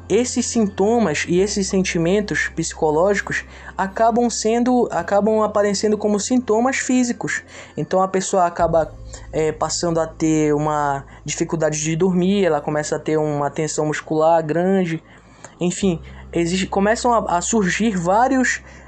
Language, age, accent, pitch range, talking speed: Portuguese, 20-39, Brazilian, 160-215 Hz, 125 wpm